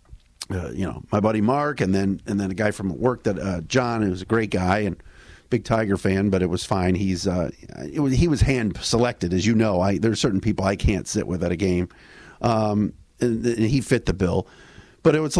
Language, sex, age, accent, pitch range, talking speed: English, male, 50-69, American, 100-135 Hz, 245 wpm